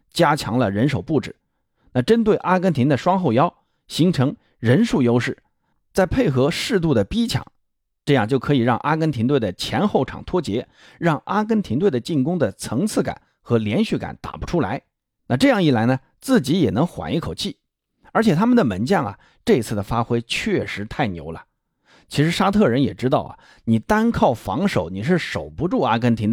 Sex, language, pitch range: male, Chinese, 120-195 Hz